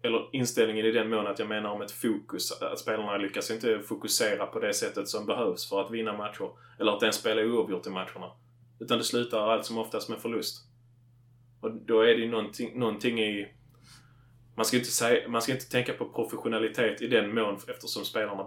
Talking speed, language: 210 wpm, Swedish